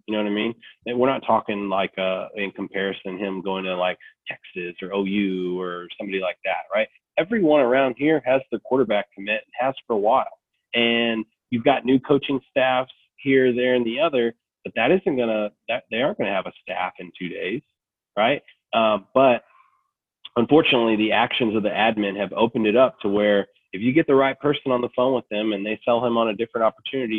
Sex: male